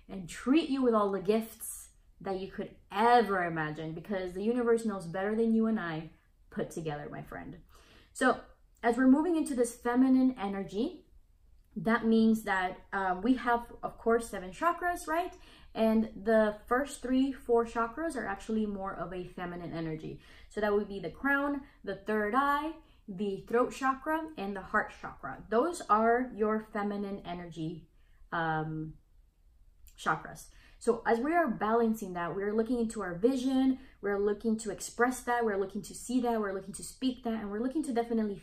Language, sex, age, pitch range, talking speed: English, female, 20-39, 195-250 Hz, 175 wpm